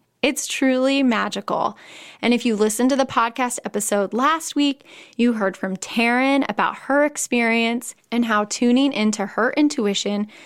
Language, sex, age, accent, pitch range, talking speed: English, female, 10-29, American, 215-285 Hz, 150 wpm